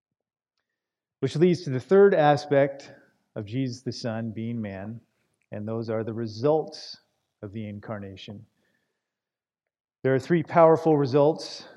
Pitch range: 115-140 Hz